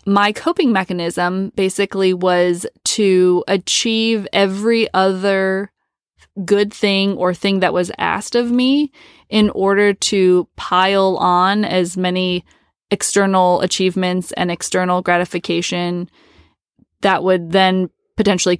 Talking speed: 110 wpm